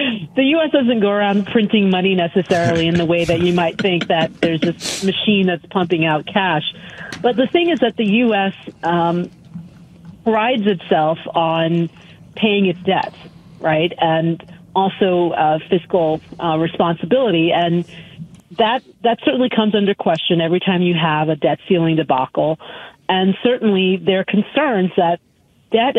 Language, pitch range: English, 165-200 Hz